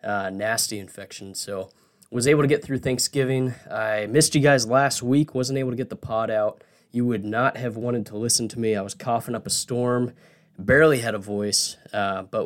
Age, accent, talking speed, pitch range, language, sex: 20-39, American, 210 wpm, 110-145 Hz, English, male